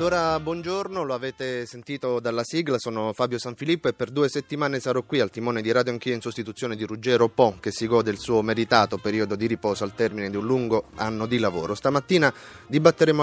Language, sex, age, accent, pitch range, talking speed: Italian, male, 30-49, native, 110-135 Hz, 205 wpm